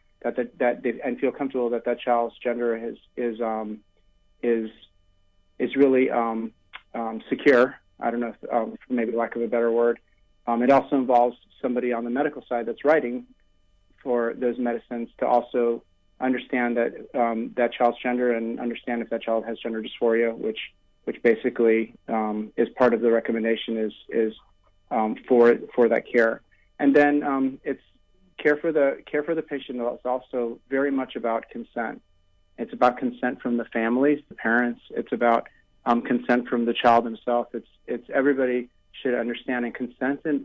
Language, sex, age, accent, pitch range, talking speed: English, male, 30-49, American, 115-130 Hz, 175 wpm